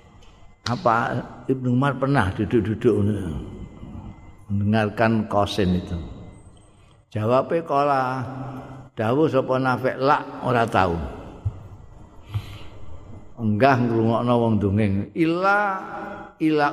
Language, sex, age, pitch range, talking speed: Indonesian, male, 50-69, 100-130 Hz, 85 wpm